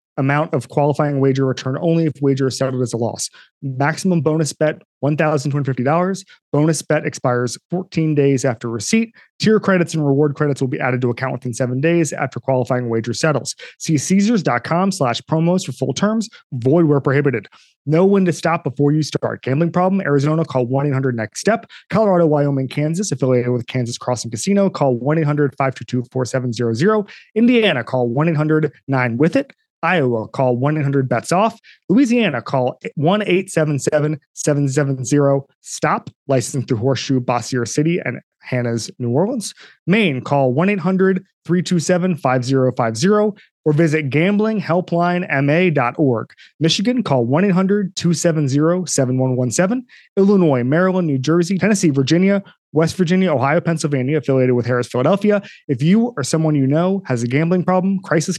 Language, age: English, 30-49